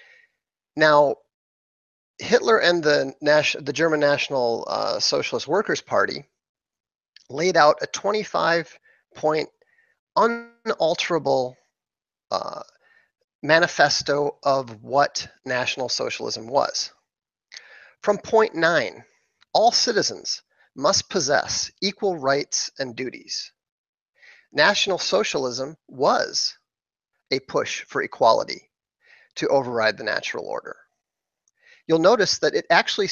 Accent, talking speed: American, 90 wpm